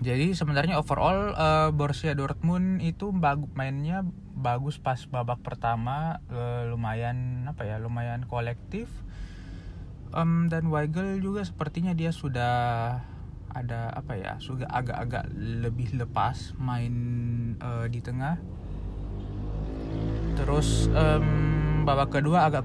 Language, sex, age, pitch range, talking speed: Indonesian, male, 20-39, 115-145 Hz, 110 wpm